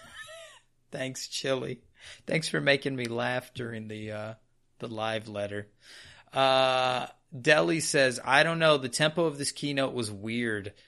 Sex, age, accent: male, 30-49, American